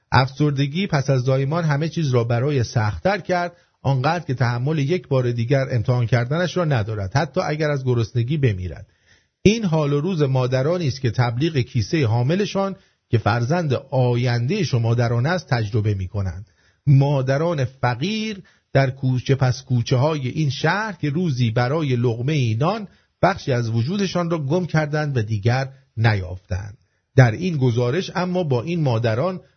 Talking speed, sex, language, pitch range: 145 wpm, male, English, 115-165 Hz